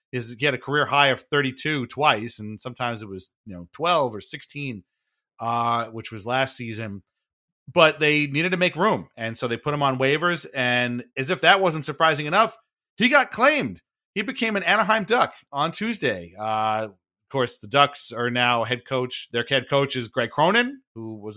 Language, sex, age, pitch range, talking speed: English, male, 30-49, 115-150 Hz, 195 wpm